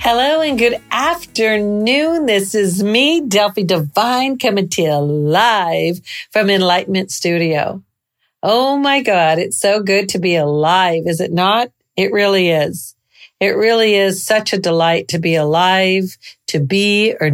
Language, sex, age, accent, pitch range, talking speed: English, female, 50-69, American, 165-215 Hz, 150 wpm